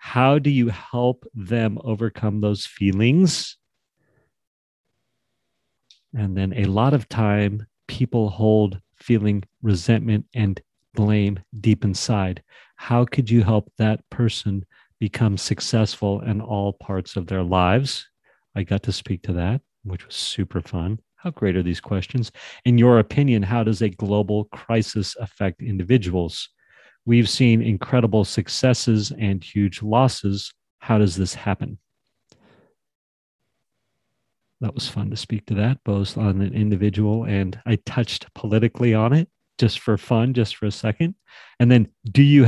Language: English